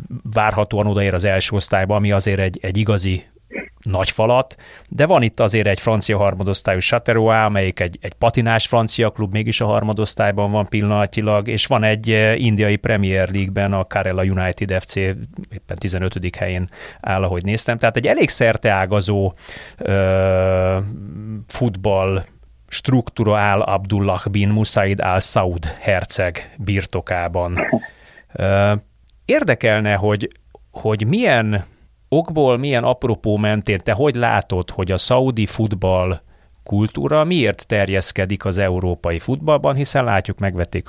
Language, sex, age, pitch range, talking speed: Hungarian, male, 30-49, 95-110 Hz, 125 wpm